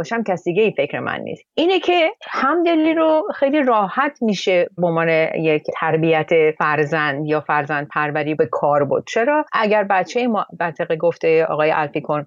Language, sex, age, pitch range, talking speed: Persian, female, 30-49, 175-245 Hz, 155 wpm